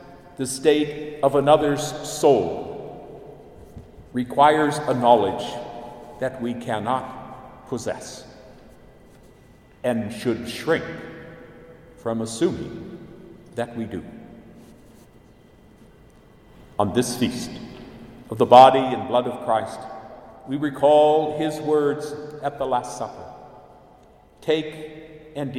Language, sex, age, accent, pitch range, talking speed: English, male, 50-69, American, 120-150 Hz, 95 wpm